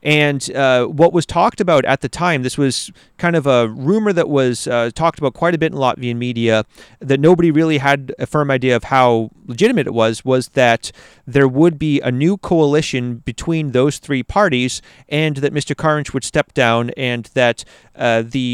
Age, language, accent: 30-49, English, American